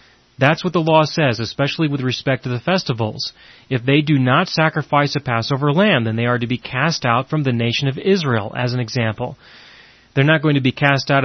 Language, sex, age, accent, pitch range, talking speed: English, male, 30-49, American, 125-155 Hz, 220 wpm